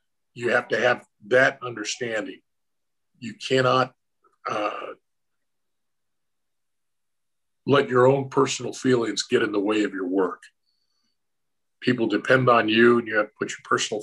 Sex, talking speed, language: male, 135 wpm, English